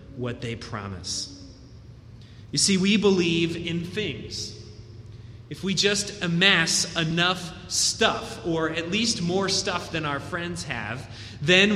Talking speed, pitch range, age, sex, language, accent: 130 wpm, 150-205 Hz, 30-49, male, English, American